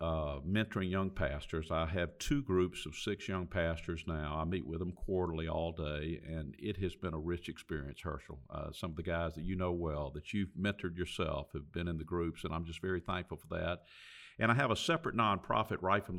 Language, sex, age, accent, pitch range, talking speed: English, male, 50-69, American, 80-100 Hz, 225 wpm